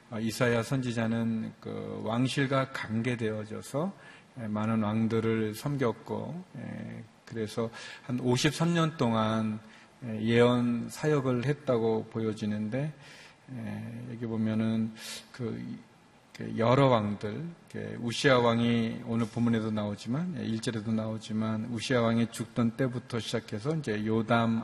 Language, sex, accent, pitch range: Korean, male, native, 110-125 Hz